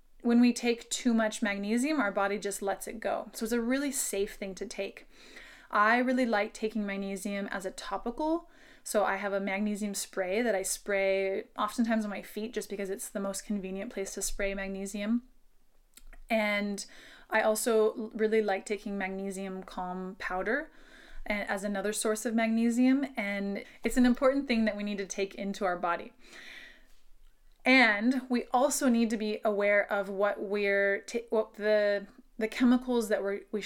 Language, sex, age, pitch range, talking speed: English, female, 20-39, 200-235 Hz, 170 wpm